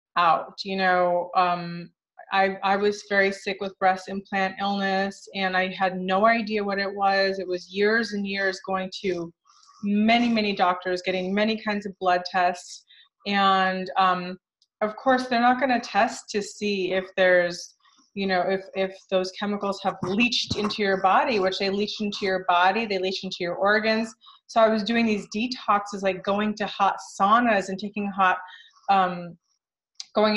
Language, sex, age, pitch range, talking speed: English, female, 30-49, 185-205 Hz, 175 wpm